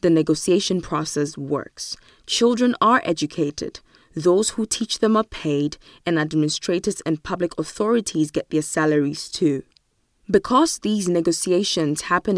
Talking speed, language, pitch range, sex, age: 125 wpm, English, 160-200 Hz, female, 20-39